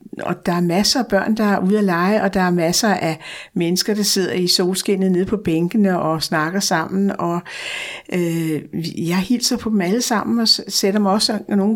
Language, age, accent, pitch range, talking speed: Danish, 60-79, native, 180-215 Hz, 205 wpm